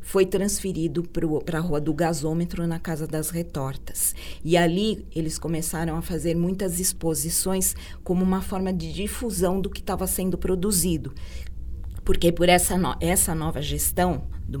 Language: Portuguese